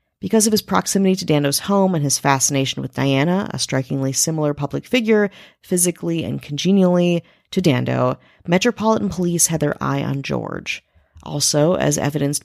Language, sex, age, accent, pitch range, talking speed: English, female, 30-49, American, 140-180 Hz, 155 wpm